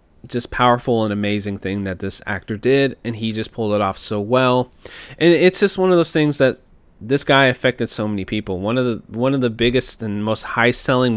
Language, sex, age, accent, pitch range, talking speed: English, male, 20-39, American, 105-130 Hz, 220 wpm